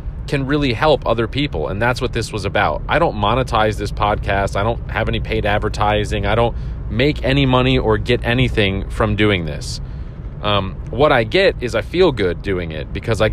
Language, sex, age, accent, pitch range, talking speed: English, male, 30-49, American, 100-125 Hz, 205 wpm